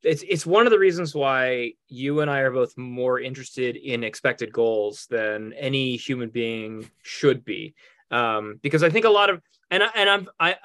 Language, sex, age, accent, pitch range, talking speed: English, male, 30-49, American, 125-165 Hz, 195 wpm